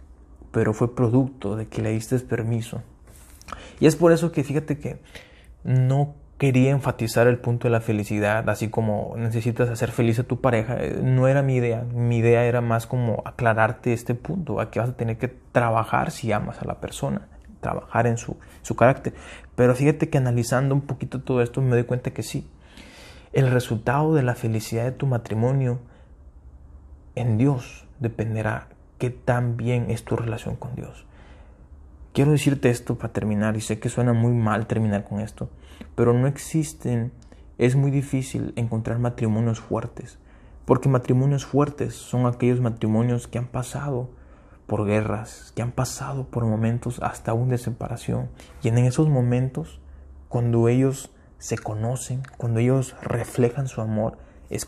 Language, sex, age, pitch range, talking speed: Spanish, male, 20-39, 110-125 Hz, 165 wpm